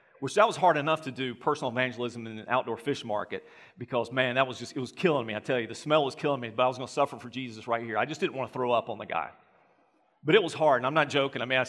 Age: 40-59